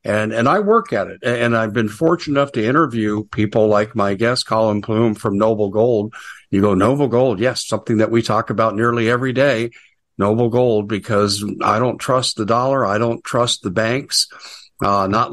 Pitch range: 105-125 Hz